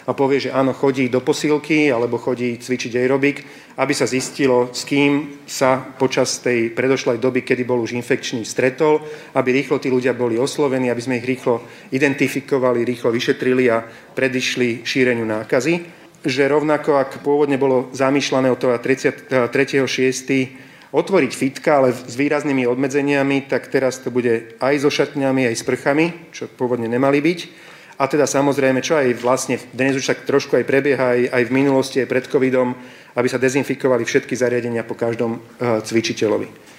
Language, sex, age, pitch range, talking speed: Slovak, male, 30-49, 125-140 Hz, 155 wpm